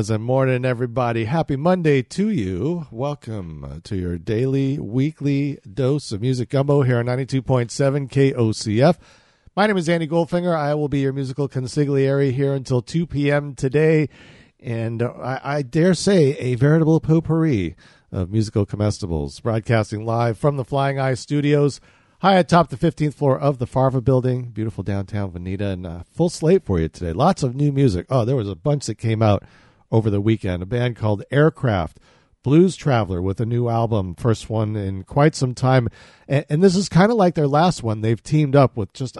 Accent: American